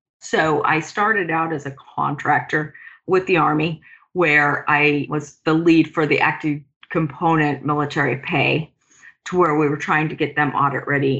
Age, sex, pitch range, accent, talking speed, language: 40-59, female, 145-165 Hz, American, 165 wpm, English